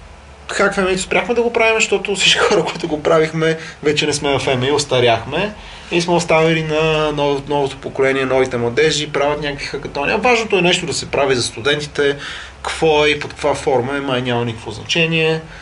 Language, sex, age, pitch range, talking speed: Bulgarian, male, 30-49, 120-165 Hz, 185 wpm